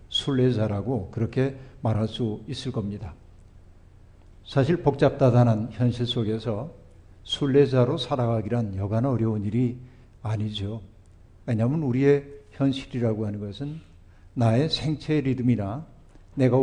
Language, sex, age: Korean, male, 60-79